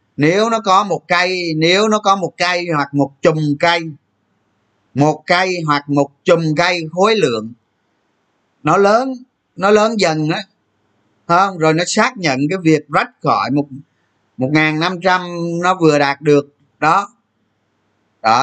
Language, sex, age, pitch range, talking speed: Vietnamese, male, 20-39, 145-195 Hz, 155 wpm